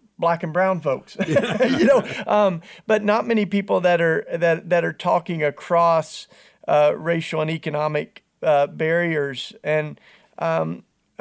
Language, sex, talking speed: English, male, 140 wpm